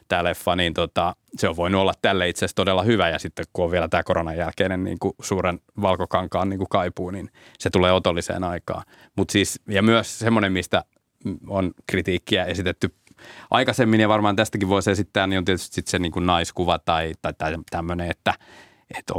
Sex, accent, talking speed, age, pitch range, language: male, native, 180 wpm, 30-49, 90-105 Hz, Finnish